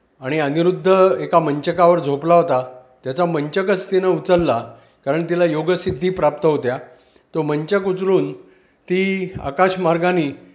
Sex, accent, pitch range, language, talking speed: male, native, 150-185 Hz, Marathi, 115 wpm